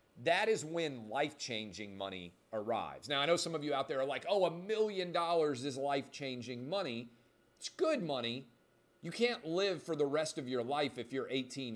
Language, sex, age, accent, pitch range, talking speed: English, male, 40-59, American, 125-165 Hz, 195 wpm